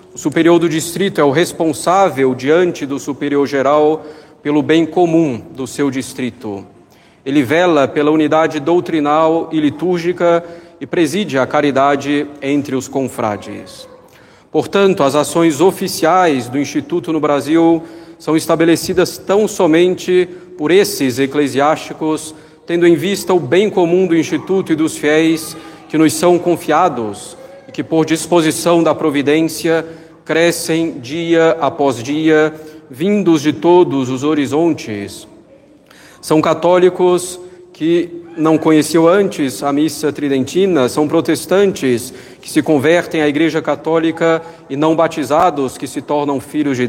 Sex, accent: male, Brazilian